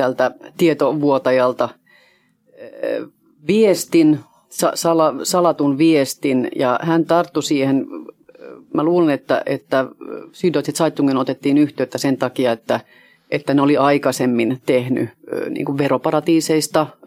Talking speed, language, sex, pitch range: 100 wpm, Finnish, female, 130-165 Hz